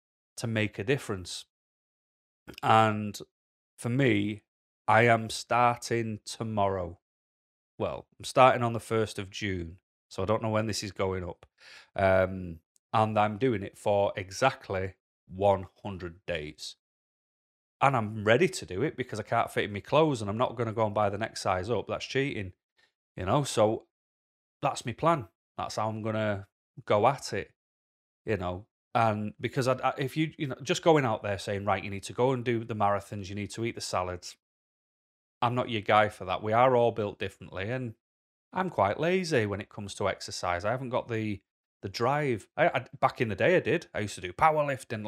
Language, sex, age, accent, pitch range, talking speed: English, male, 30-49, British, 100-125 Hz, 195 wpm